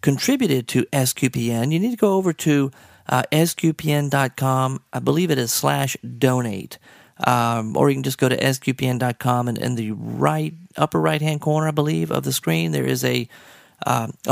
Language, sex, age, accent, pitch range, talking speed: English, male, 40-59, American, 125-165 Hz, 175 wpm